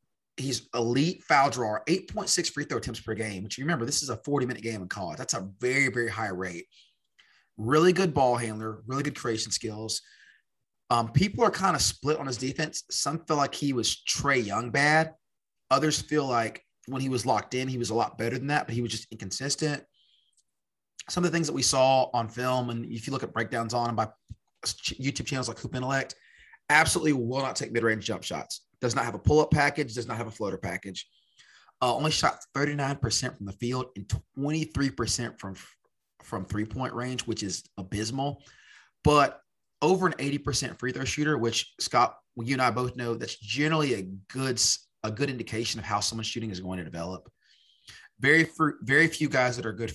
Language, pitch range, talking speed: English, 110-140 Hz, 200 wpm